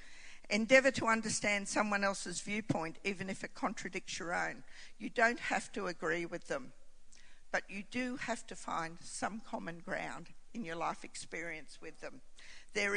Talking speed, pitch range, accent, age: 160 wpm, 170-230 Hz, Australian, 50-69